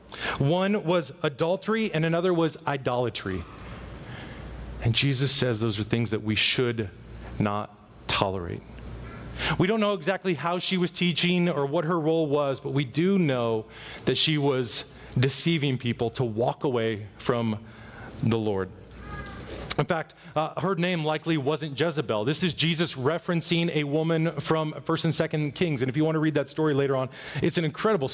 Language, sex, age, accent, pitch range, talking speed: English, male, 30-49, American, 140-175 Hz, 165 wpm